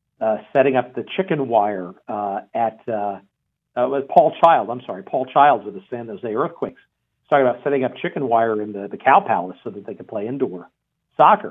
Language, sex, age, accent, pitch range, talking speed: English, male, 50-69, American, 130-170 Hz, 215 wpm